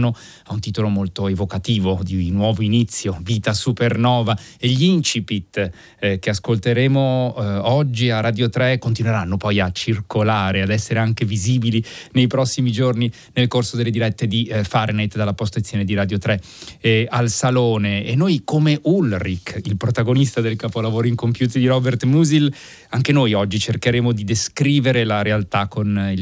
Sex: male